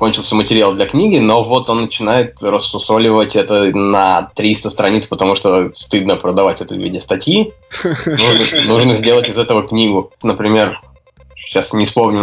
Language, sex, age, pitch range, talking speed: Russian, male, 20-39, 95-120 Hz, 150 wpm